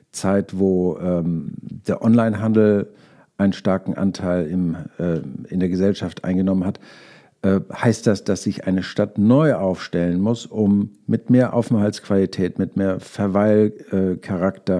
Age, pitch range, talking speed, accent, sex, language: 50-69, 100-125 Hz, 130 wpm, German, male, German